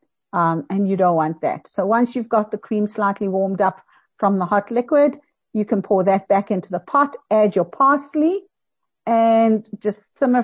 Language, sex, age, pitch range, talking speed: English, female, 50-69, 190-235 Hz, 190 wpm